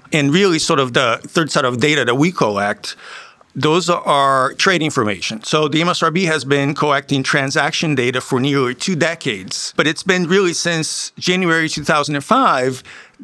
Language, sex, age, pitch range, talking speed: English, male, 50-69, 130-165 Hz, 160 wpm